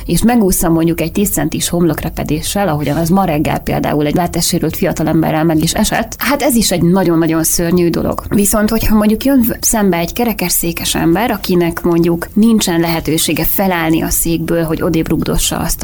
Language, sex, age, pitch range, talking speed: Hungarian, female, 20-39, 165-190 Hz, 165 wpm